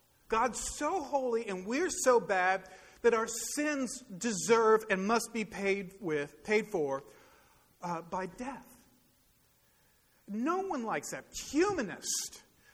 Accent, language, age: American, English, 40-59